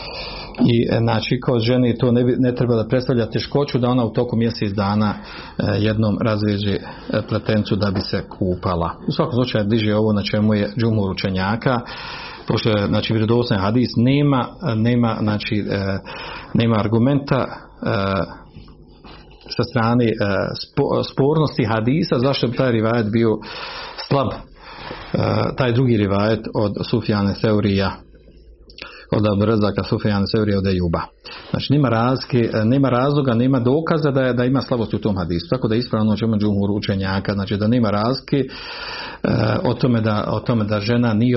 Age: 50-69